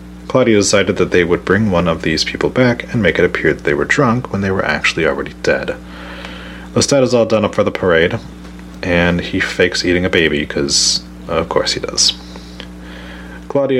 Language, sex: English, male